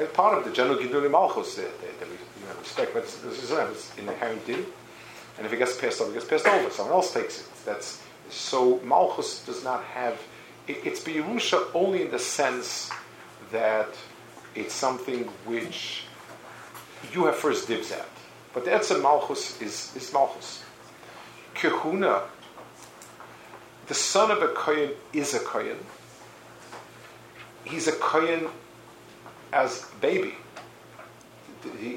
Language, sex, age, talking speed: English, male, 50-69, 145 wpm